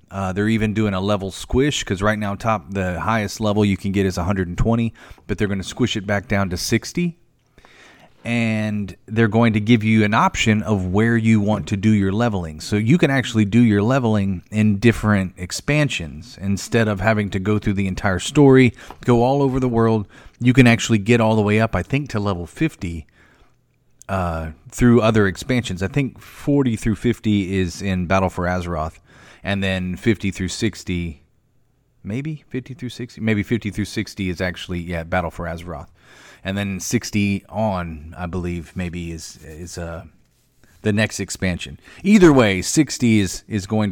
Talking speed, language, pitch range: 185 wpm, English, 90-115 Hz